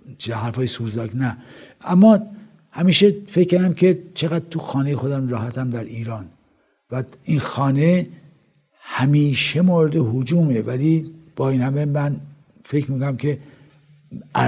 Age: 60-79